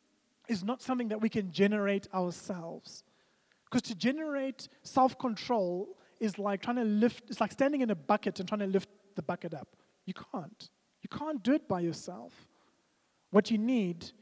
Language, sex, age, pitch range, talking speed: English, male, 20-39, 185-230 Hz, 175 wpm